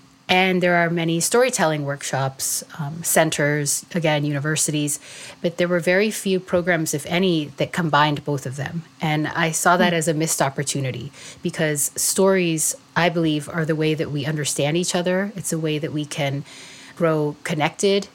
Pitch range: 150-175 Hz